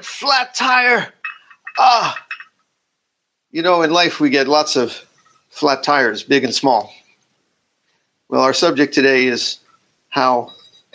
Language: English